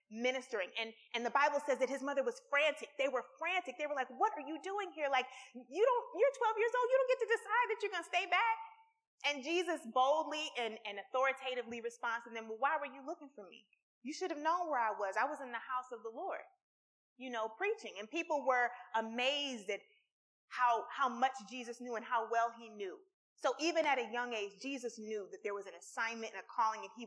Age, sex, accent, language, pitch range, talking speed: 30-49, female, American, English, 225-285 Hz, 235 wpm